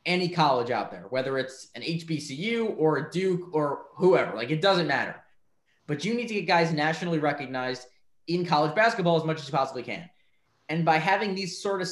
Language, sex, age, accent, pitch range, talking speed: English, male, 20-39, American, 150-185 Hz, 200 wpm